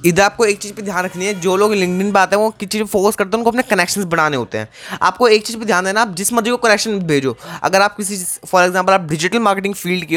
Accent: native